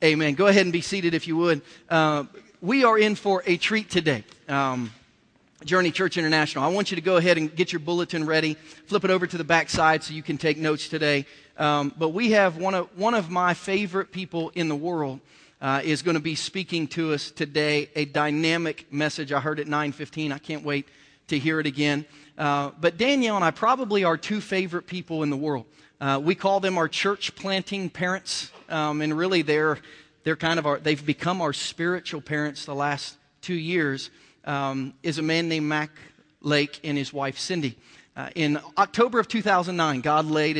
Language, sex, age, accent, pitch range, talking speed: English, male, 40-59, American, 145-175 Hz, 205 wpm